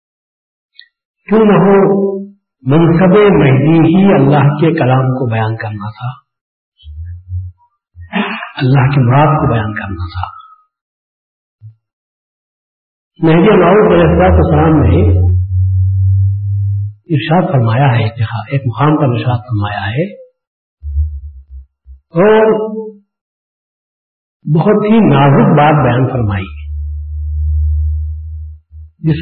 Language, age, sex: Urdu, 50-69, male